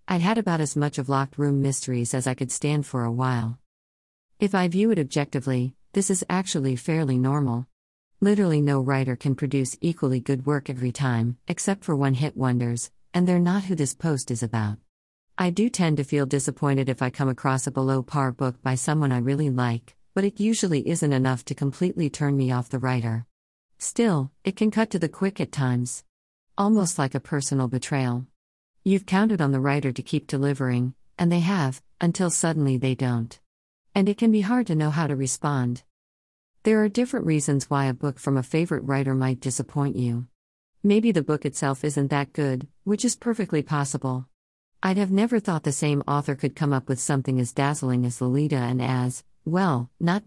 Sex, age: female, 50-69